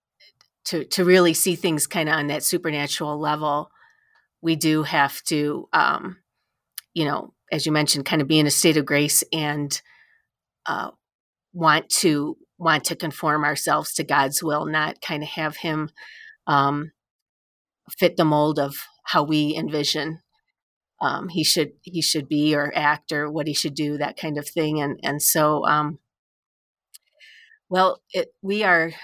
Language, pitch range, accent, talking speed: English, 150-175 Hz, American, 160 wpm